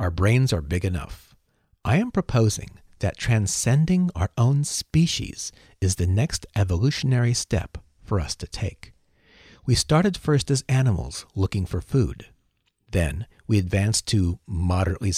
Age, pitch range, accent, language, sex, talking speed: 50-69, 90-130 Hz, American, English, male, 140 wpm